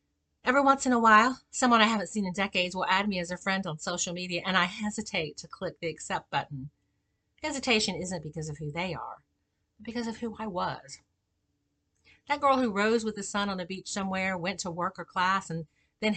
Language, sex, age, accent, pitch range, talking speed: English, female, 50-69, American, 155-225 Hz, 220 wpm